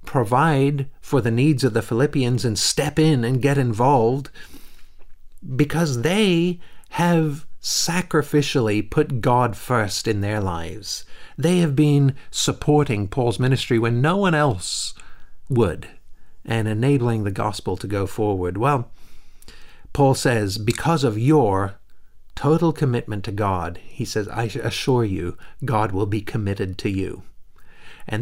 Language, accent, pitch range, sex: English, American, 105-140 Hz, male